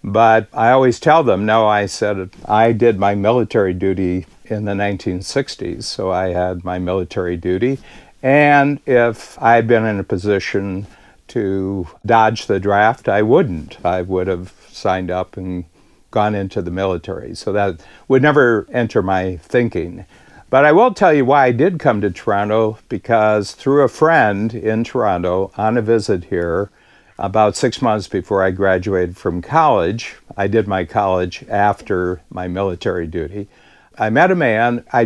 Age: 60-79